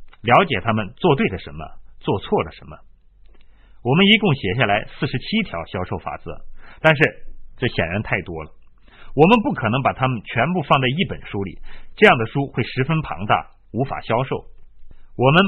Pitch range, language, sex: 105-170 Hz, Chinese, male